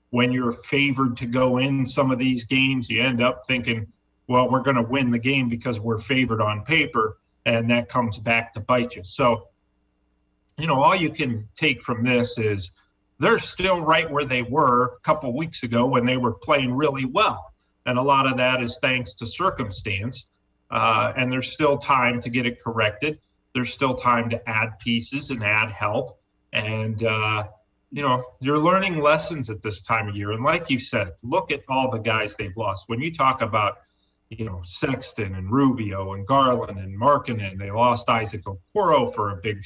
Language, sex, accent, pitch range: English, male, American, 110-130 Hz